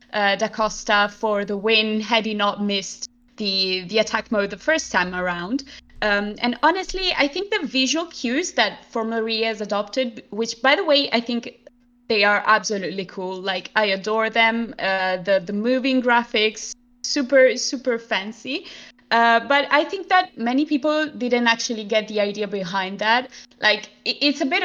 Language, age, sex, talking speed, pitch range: English, 20-39, female, 175 wpm, 210-260 Hz